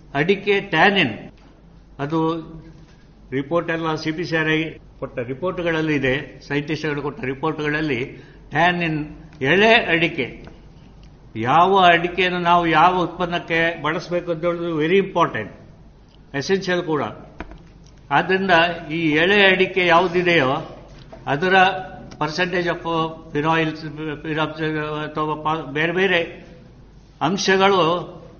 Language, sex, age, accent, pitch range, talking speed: Kannada, male, 60-79, native, 150-180 Hz, 85 wpm